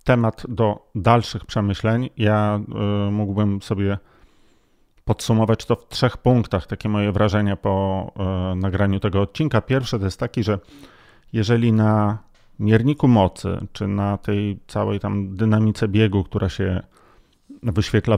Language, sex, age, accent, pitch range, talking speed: Polish, male, 40-59, native, 100-120 Hz, 125 wpm